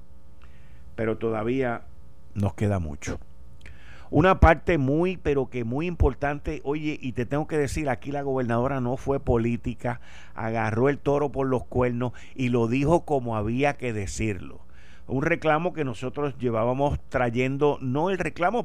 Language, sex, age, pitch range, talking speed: Spanish, male, 50-69, 90-145 Hz, 150 wpm